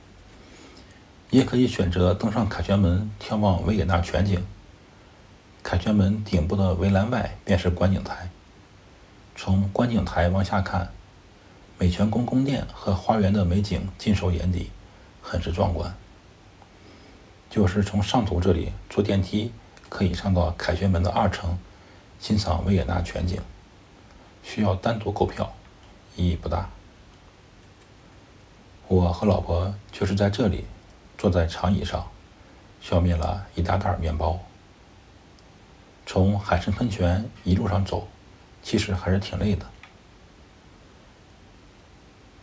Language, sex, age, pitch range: Chinese, male, 60-79, 90-100 Hz